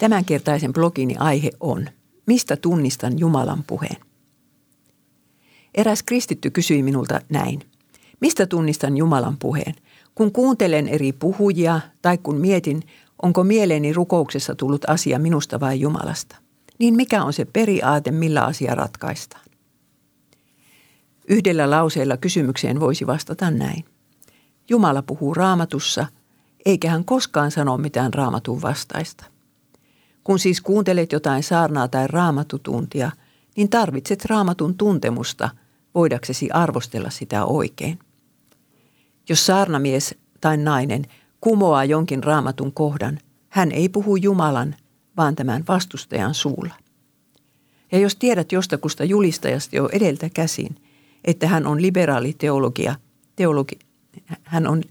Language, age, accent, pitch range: Finnish, 50-69, native, 140-180 Hz